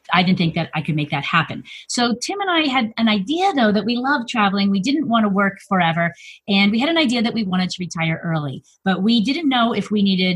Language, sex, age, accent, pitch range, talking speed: English, female, 30-49, American, 185-240 Hz, 260 wpm